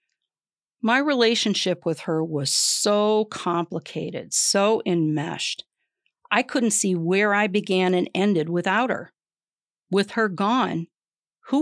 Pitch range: 165-215 Hz